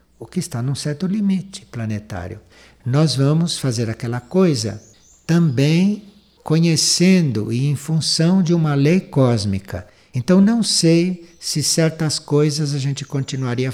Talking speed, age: 130 wpm, 60-79